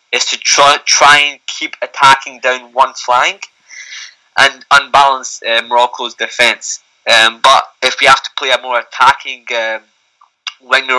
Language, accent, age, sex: English, British, 20-39, male